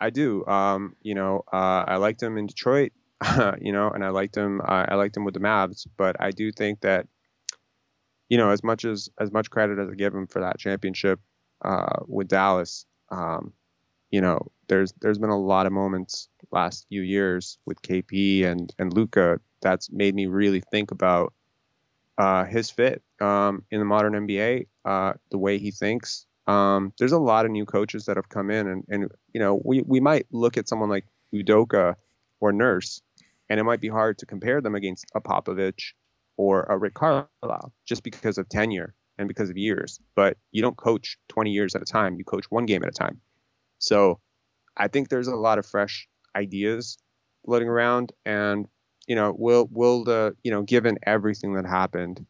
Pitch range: 95-110 Hz